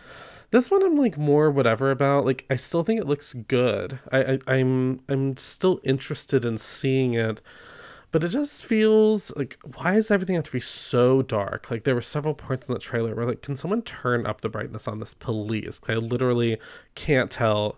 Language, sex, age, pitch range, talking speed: English, male, 20-39, 110-145 Hz, 205 wpm